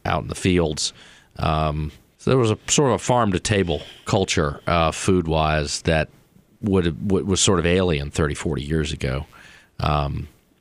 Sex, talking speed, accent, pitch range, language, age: male, 140 wpm, American, 80-95 Hz, English, 40-59